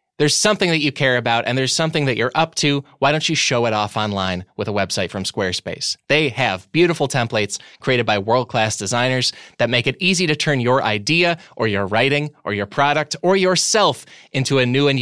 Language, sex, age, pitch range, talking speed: English, male, 20-39, 115-160 Hz, 210 wpm